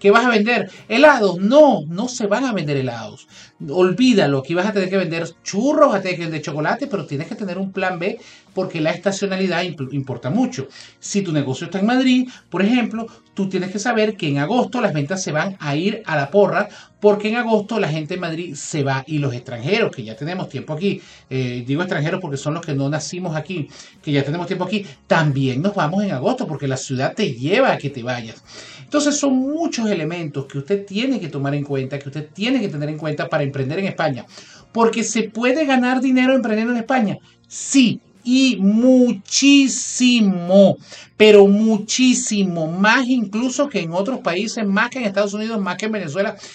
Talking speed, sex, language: 205 wpm, male, Spanish